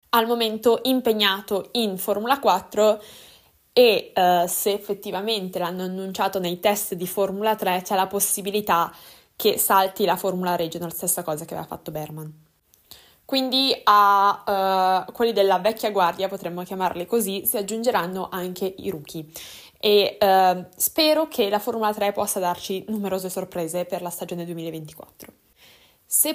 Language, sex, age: Italian, female, 20-39